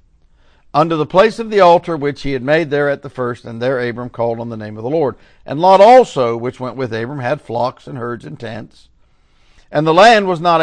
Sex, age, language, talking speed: male, 50-69, English, 235 wpm